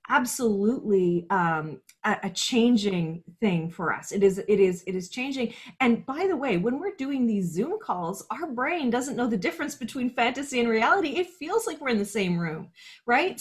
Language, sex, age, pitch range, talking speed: English, female, 30-49, 185-260 Hz, 195 wpm